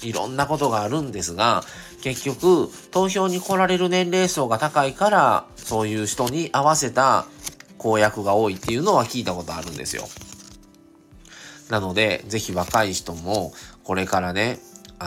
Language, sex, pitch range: Japanese, male, 90-125 Hz